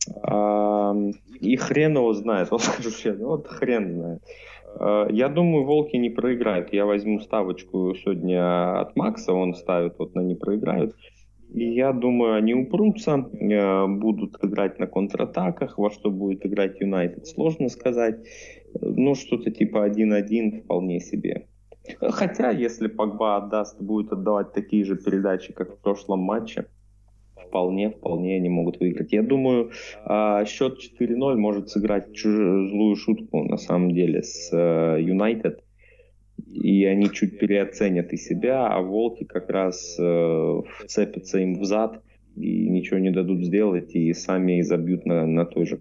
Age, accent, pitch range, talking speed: 20-39, native, 90-110 Hz, 135 wpm